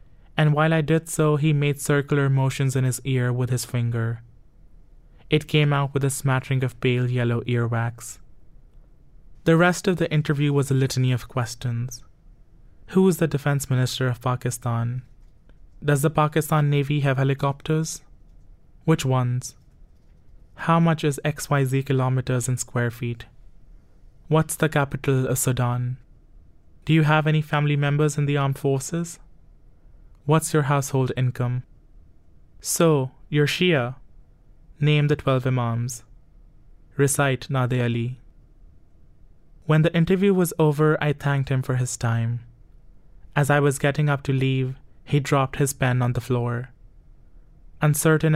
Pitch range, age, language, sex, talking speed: 120-145 Hz, 20-39, English, male, 140 wpm